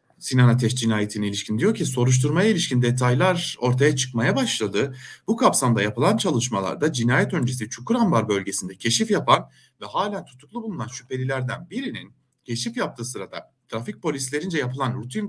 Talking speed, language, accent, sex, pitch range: 135 wpm, German, Turkish, male, 120-180 Hz